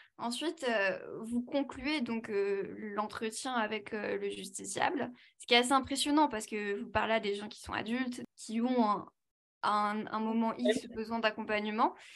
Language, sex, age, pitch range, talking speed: English, female, 10-29, 215-260 Hz, 175 wpm